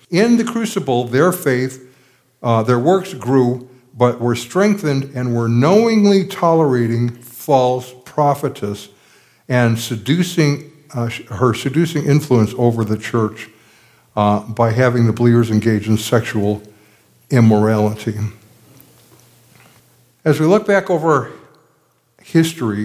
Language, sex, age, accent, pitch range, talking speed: English, male, 60-79, American, 115-145 Hz, 110 wpm